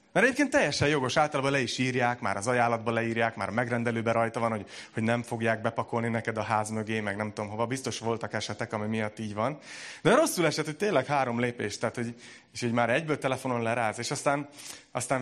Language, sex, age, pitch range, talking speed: Hungarian, male, 30-49, 115-150 Hz, 215 wpm